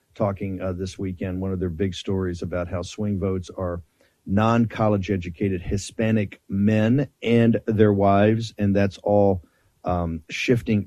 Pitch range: 90-105 Hz